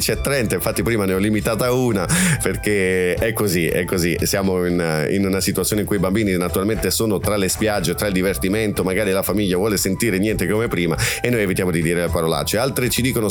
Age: 30-49